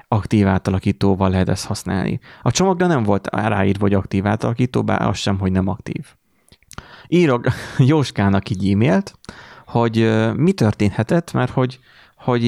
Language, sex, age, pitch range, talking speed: Hungarian, male, 30-49, 100-120 Hz, 140 wpm